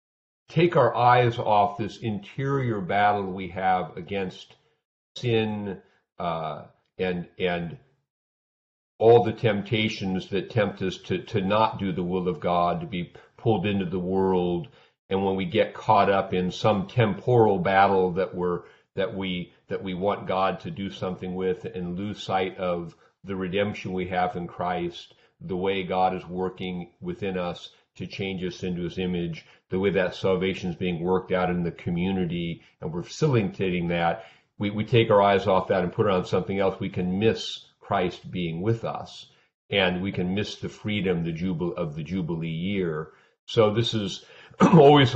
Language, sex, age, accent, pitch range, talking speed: English, male, 50-69, American, 90-100 Hz, 175 wpm